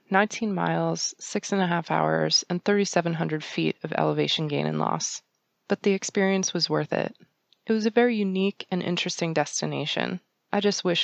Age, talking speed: 20-39, 175 wpm